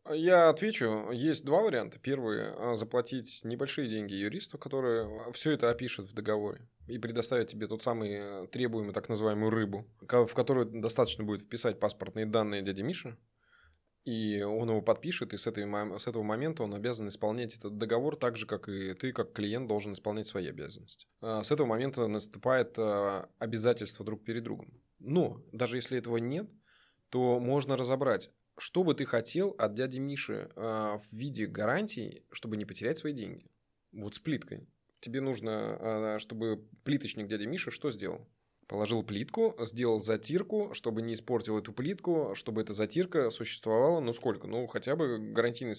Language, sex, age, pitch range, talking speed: Russian, male, 20-39, 110-130 Hz, 160 wpm